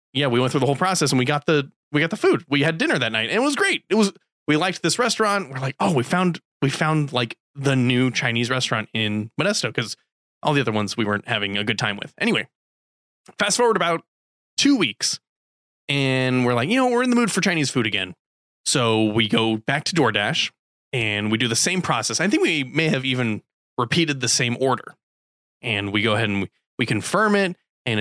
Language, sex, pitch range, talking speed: English, male, 115-160 Hz, 225 wpm